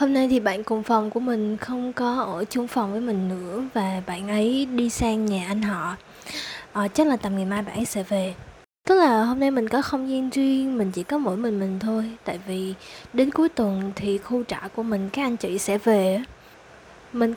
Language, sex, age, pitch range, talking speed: Vietnamese, female, 10-29, 200-260 Hz, 225 wpm